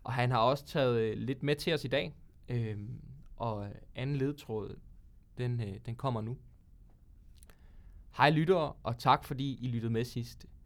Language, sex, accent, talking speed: Danish, male, native, 160 wpm